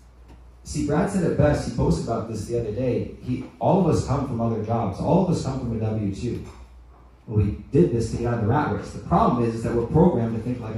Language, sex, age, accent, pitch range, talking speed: English, male, 30-49, American, 100-145 Hz, 265 wpm